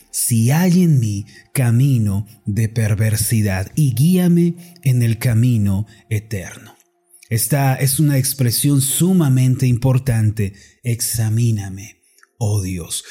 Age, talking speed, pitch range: 30-49, 100 wpm, 120-160 Hz